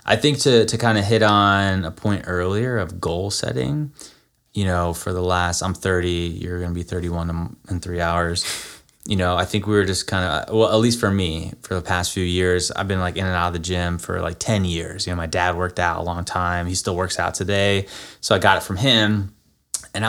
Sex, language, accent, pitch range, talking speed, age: male, English, American, 90-105 Hz, 245 wpm, 20-39